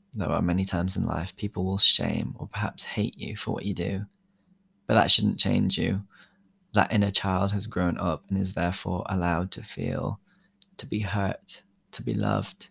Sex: male